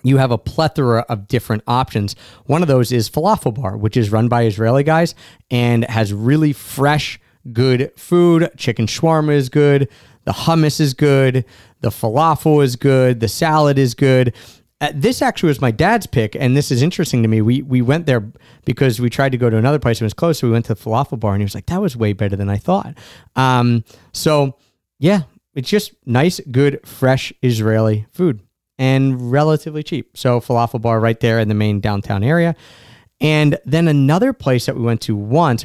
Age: 30-49